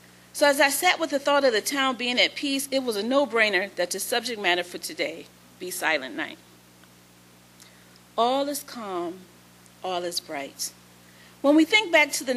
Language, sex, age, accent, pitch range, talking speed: English, female, 40-59, American, 185-280 Hz, 185 wpm